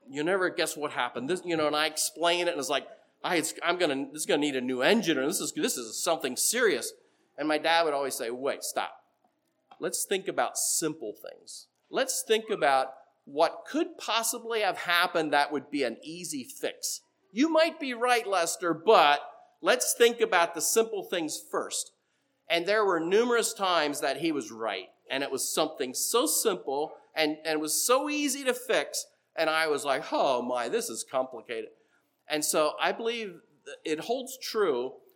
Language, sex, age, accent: English, male, 40-59, American